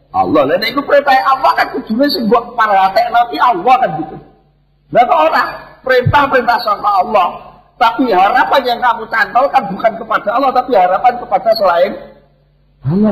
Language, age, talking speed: Indonesian, 50-69, 150 wpm